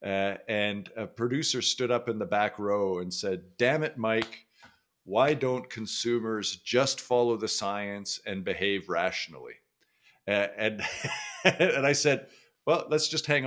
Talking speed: 150 wpm